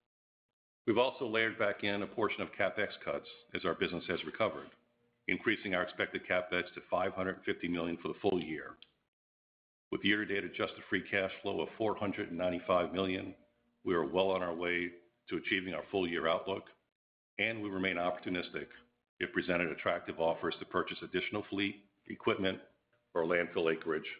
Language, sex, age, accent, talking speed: English, male, 50-69, American, 155 wpm